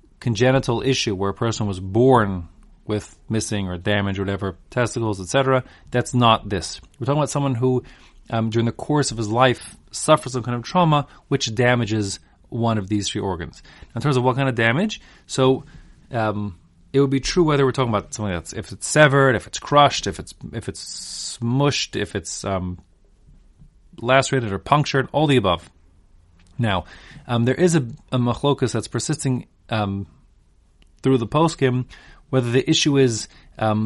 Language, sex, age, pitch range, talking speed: English, male, 30-49, 100-130 Hz, 175 wpm